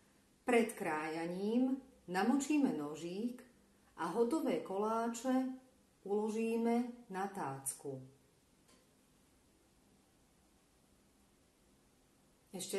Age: 40-59